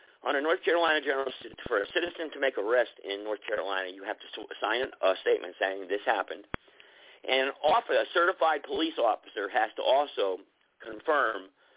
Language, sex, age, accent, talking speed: English, male, 50-69, American, 165 wpm